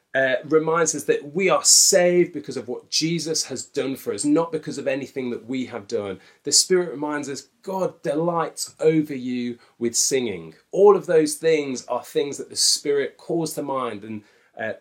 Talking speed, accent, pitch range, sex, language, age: 190 wpm, British, 125-180 Hz, male, English, 30-49